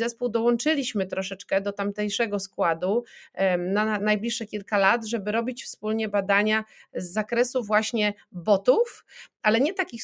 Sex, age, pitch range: female, 30-49, 190-225 Hz